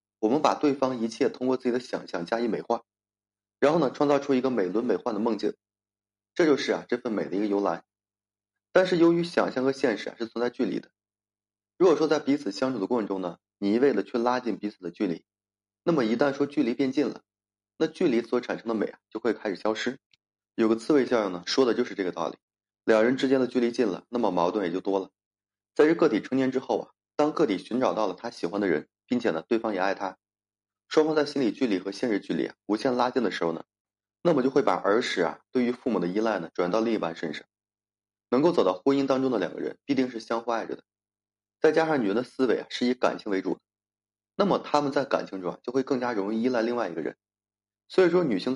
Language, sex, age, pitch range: Chinese, male, 30-49, 100-130 Hz